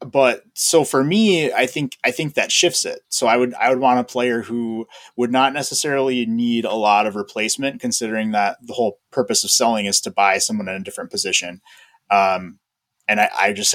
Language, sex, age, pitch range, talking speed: English, male, 20-39, 105-150 Hz, 210 wpm